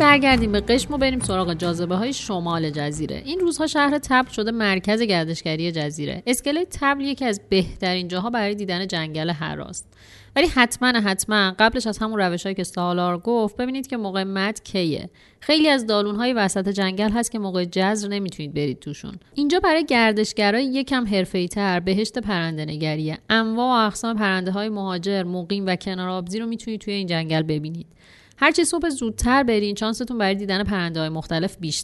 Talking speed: 165 wpm